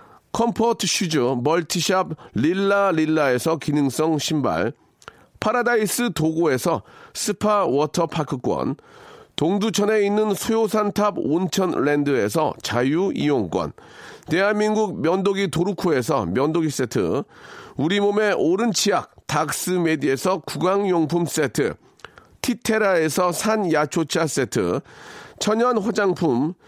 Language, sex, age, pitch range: Korean, male, 40-59, 160-215 Hz